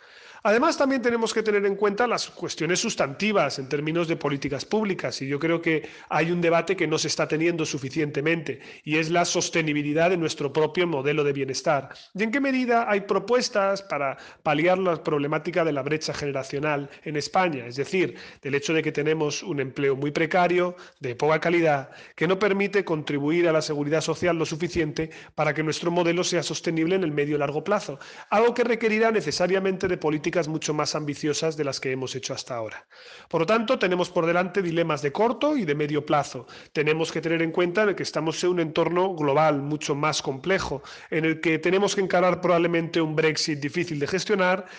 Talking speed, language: 195 wpm, Spanish